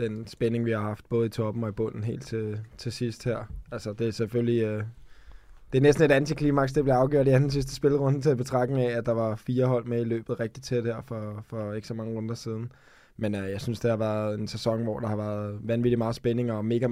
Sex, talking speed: male, 255 wpm